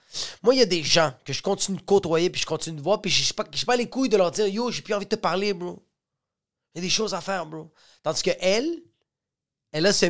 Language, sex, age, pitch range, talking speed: French, male, 30-49, 135-195 Hz, 290 wpm